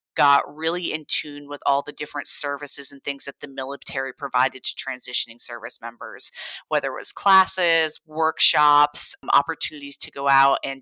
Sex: female